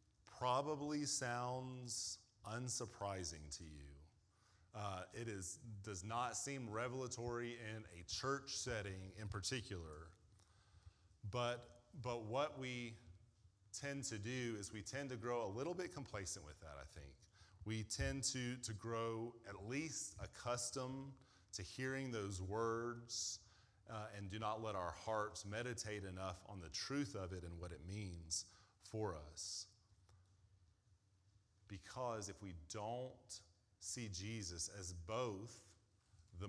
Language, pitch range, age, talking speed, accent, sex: English, 95-120 Hz, 30-49, 130 wpm, American, male